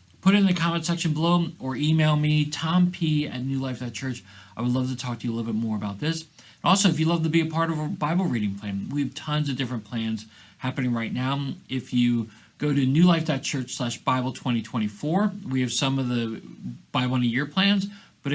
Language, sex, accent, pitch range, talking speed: English, male, American, 115-150 Hz, 220 wpm